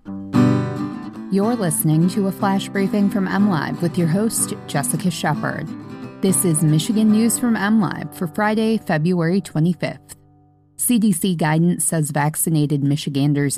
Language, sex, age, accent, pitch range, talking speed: English, female, 20-39, American, 150-190 Hz, 125 wpm